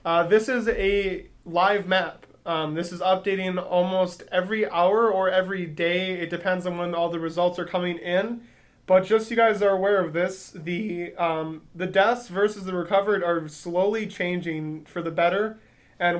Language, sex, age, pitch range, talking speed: English, male, 20-39, 170-195 Hz, 180 wpm